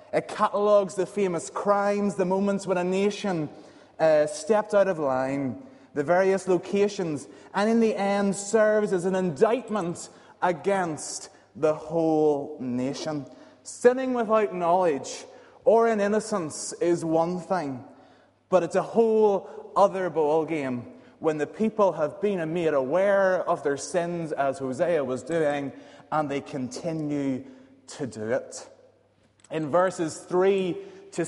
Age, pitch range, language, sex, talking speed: 30-49, 155-205 Hz, English, male, 130 wpm